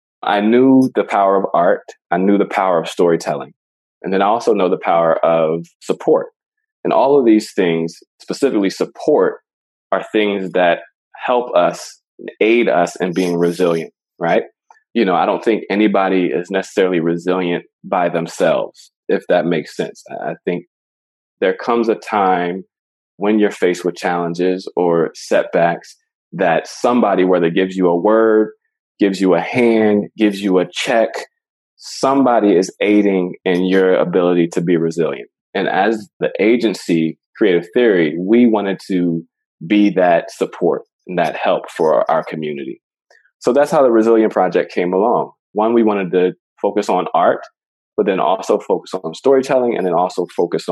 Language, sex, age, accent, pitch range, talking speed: English, male, 20-39, American, 90-110 Hz, 160 wpm